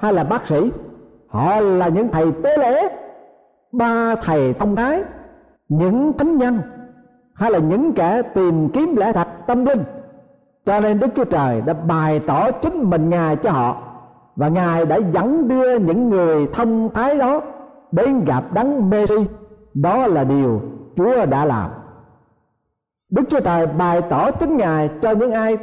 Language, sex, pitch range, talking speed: Vietnamese, male, 160-250 Hz, 165 wpm